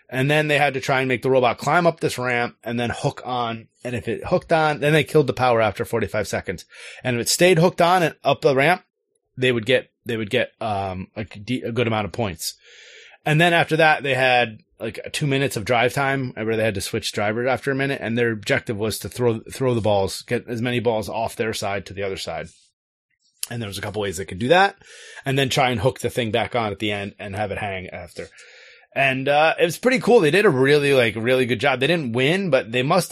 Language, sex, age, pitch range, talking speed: English, male, 30-49, 115-150 Hz, 260 wpm